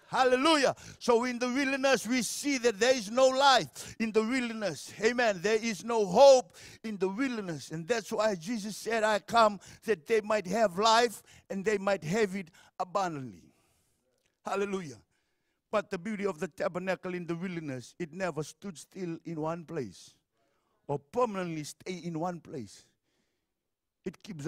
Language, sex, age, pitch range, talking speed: English, male, 60-79, 160-220 Hz, 160 wpm